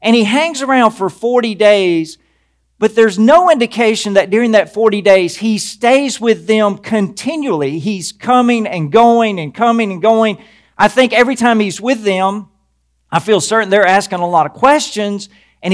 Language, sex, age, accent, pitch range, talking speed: English, male, 40-59, American, 170-230 Hz, 175 wpm